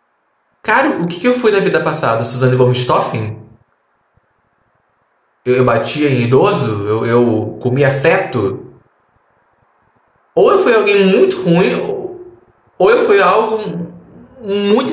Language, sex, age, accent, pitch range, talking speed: Portuguese, male, 20-39, Brazilian, 135-210 Hz, 120 wpm